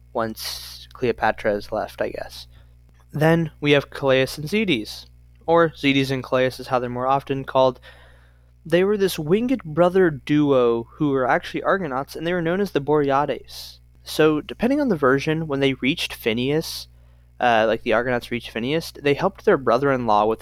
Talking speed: 175 wpm